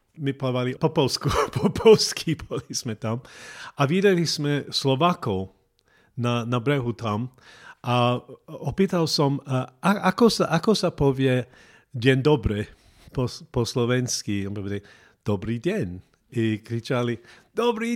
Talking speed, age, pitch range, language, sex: 125 wpm, 40-59, 120-160 Hz, Slovak, male